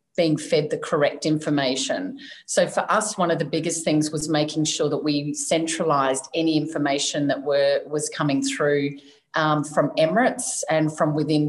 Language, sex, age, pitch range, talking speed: English, female, 40-59, 145-165 Hz, 165 wpm